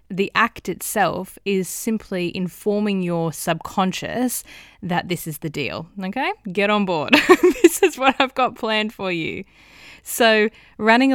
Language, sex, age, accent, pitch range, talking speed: English, female, 10-29, Australian, 155-205 Hz, 145 wpm